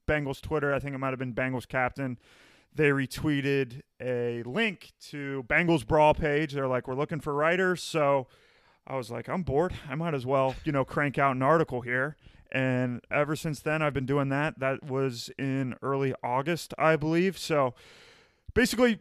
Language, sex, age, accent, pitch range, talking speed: English, male, 30-49, American, 135-165 Hz, 185 wpm